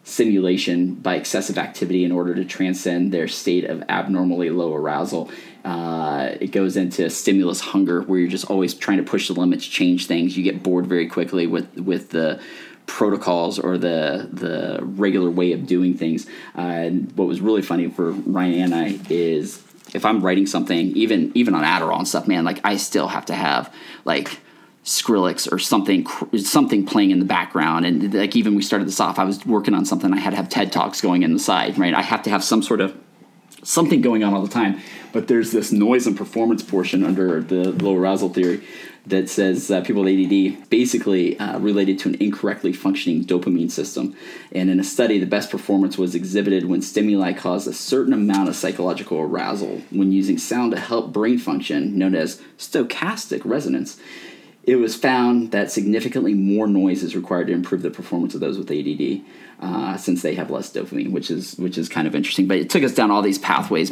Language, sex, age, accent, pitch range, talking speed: English, male, 20-39, American, 90-105 Hz, 200 wpm